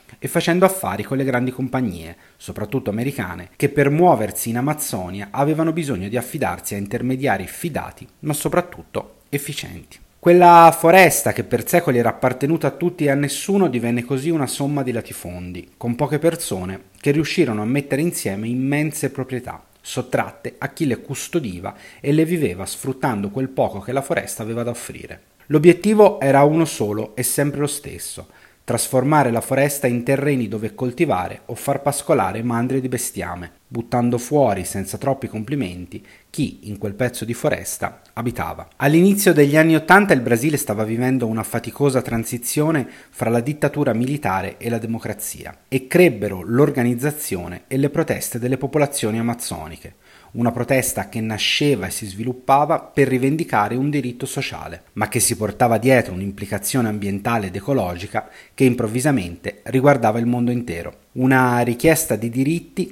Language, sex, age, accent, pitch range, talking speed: Italian, male, 30-49, native, 110-145 Hz, 155 wpm